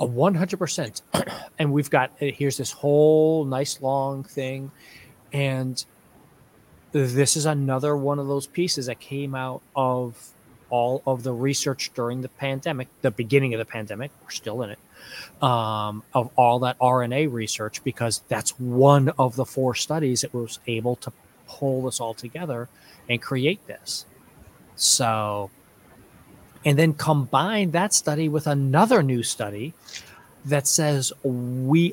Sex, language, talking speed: male, English, 145 wpm